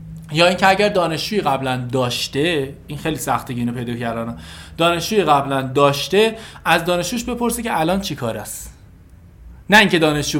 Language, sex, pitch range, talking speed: Persian, male, 140-205 Hz, 140 wpm